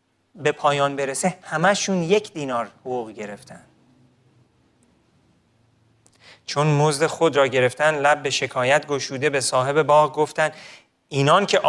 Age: 40-59